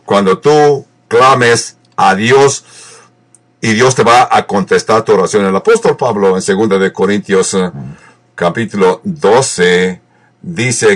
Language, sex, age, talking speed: English, male, 60-79, 125 wpm